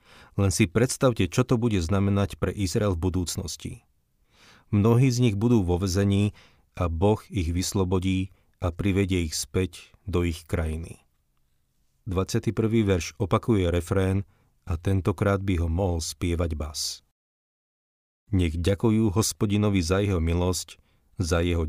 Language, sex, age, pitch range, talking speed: Slovak, male, 40-59, 80-100 Hz, 130 wpm